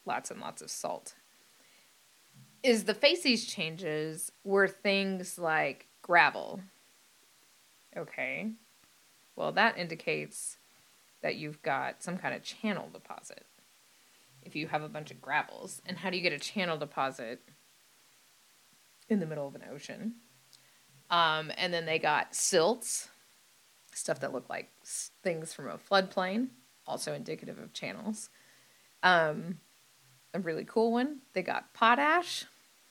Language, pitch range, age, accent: English, 170-225 Hz, 20-39, American